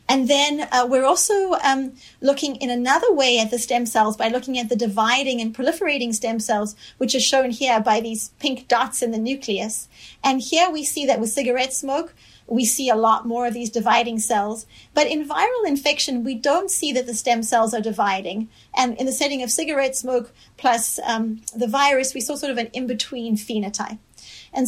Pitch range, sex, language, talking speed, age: 225-275 Hz, female, English, 200 wpm, 30-49